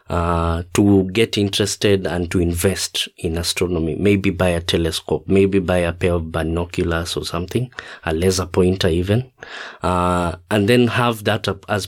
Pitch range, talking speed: 85-105 Hz, 155 wpm